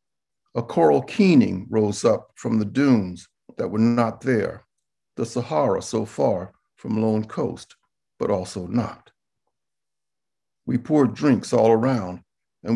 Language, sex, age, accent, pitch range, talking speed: English, male, 60-79, American, 105-125 Hz, 130 wpm